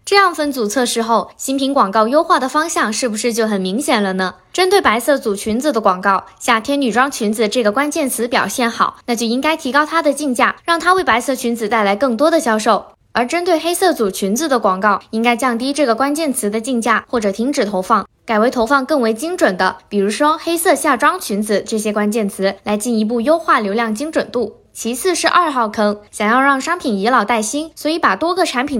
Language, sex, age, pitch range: Chinese, female, 10-29, 215-290 Hz